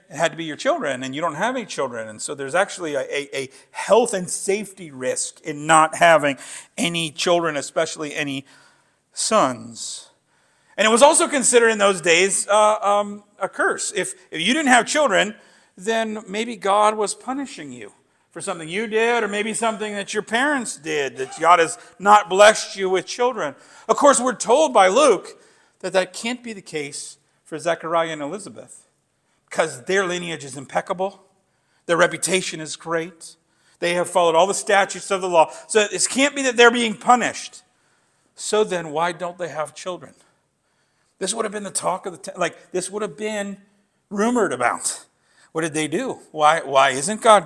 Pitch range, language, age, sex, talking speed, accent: 165-225 Hz, English, 50-69, male, 185 wpm, American